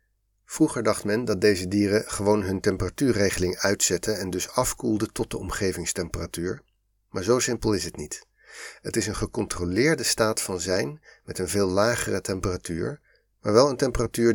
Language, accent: Dutch, Dutch